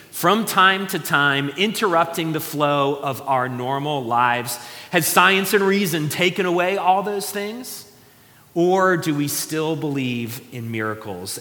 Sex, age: male, 30-49